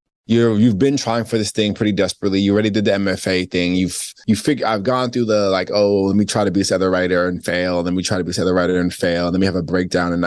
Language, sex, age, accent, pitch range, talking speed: English, male, 20-39, American, 95-110 Hz, 290 wpm